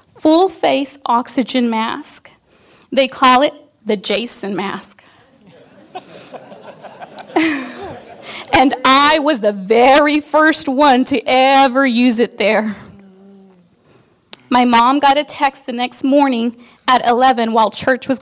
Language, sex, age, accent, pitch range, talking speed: English, female, 40-59, American, 240-295 Hz, 110 wpm